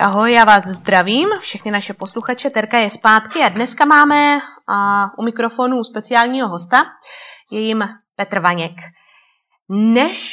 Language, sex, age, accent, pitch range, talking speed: Czech, female, 20-39, native, 185-235 Hz, 120 wpm